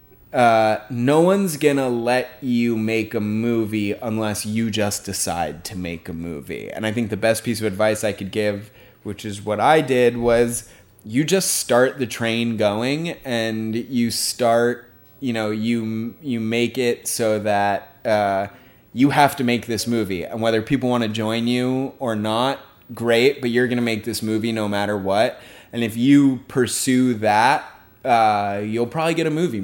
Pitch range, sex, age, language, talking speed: 105-120 Hz, male, 20-39, English, 180 wpm